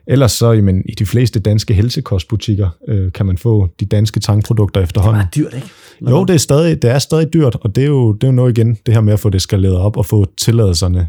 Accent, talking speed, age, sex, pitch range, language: native, 240 wpm, 30-49, male, 95-110 Hz, Danish